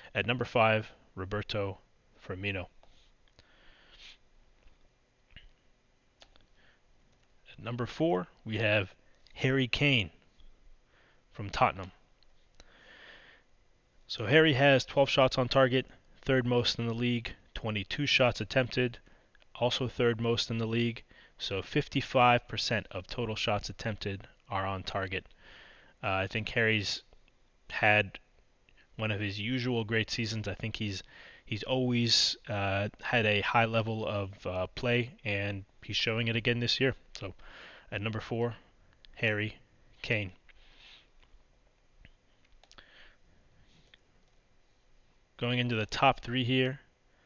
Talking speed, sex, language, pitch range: 110 wpm, male, English, 105-125 Hz